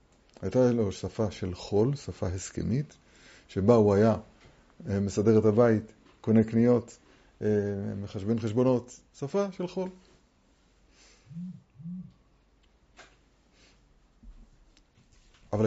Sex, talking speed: male, 80 wpm